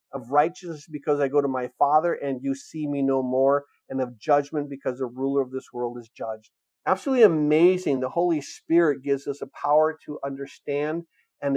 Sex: male